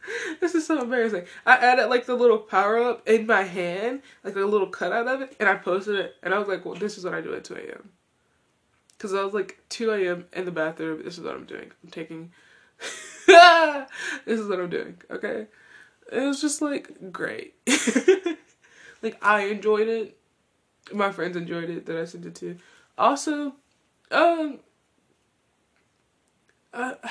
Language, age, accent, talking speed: English, 20-39, American, 175 wpm